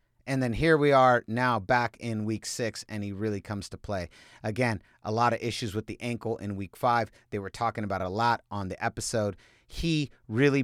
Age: 30-49